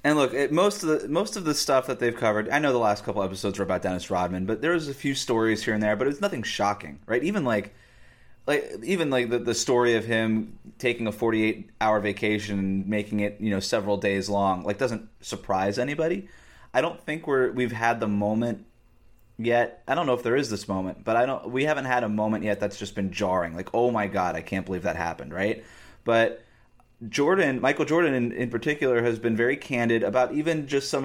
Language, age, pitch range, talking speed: English, 30-49, 105-135 Hz, 230 wpm